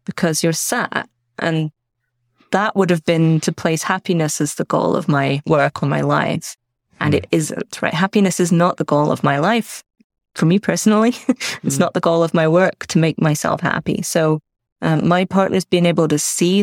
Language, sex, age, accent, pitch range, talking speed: English, female, 20-39, British, 145-175 Hz, 195 wpm